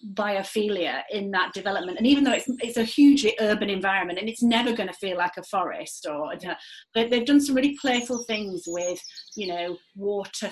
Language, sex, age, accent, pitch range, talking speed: English, female, 30-49, British, 180-225 Hz, 195 wpm